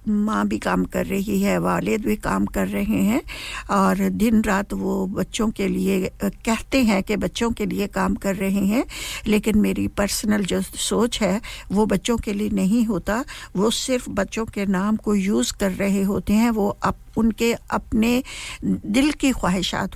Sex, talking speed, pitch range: female, 175 wpm, 195-225 Hz